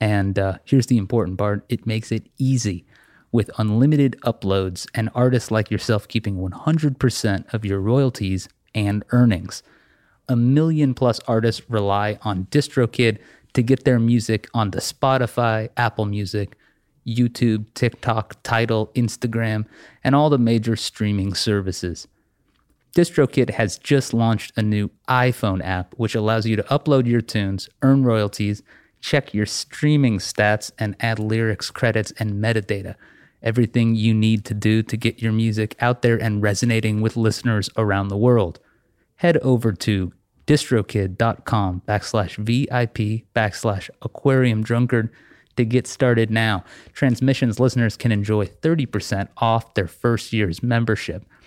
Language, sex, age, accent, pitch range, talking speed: English, male, 30-49, American, 105-125 Hz, 140 wpm